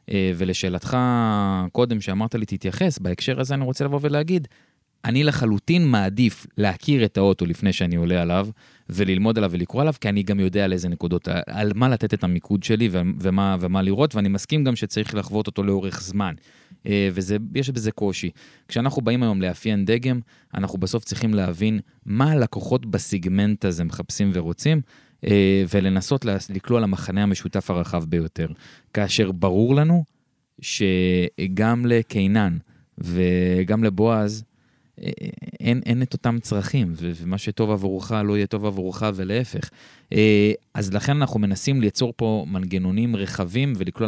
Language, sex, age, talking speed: Hebrew, male, 20-39, 110 wpm